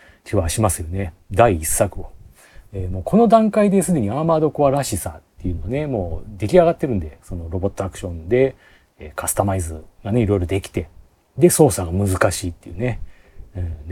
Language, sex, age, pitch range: Japanese, male, 40-59, 90-125 Hz